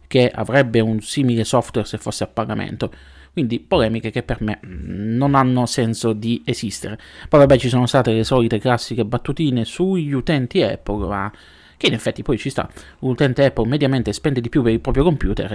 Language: Italian